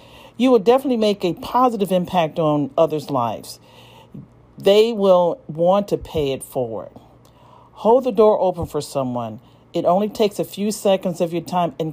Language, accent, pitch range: English, American, 165-210 Hz